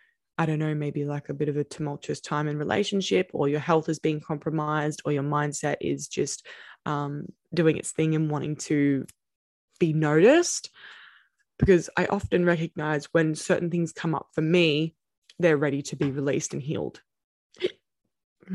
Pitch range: 150-175 Hz